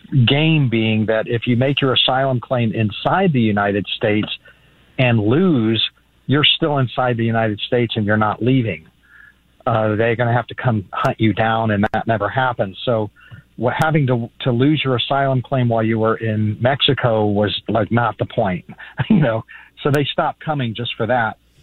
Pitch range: 110-135 Hz